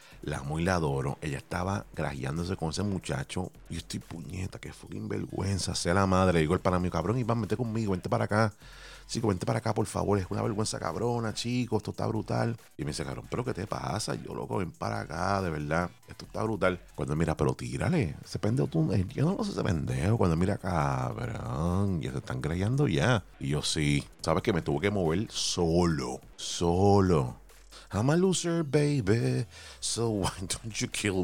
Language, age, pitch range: Spanish, 30-49, 80-110 Hz